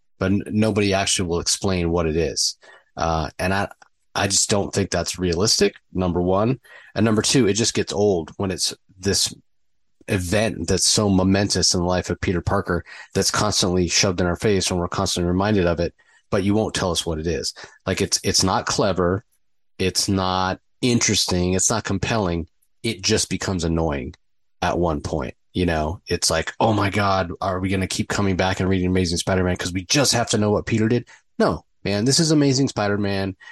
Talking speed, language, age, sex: 195 wpm, English, 30-49, male